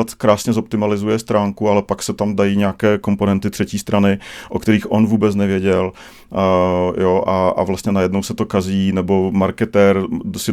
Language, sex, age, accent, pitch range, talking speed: Czech, male, 40-59, native, 100-115 Hz, 165 wpm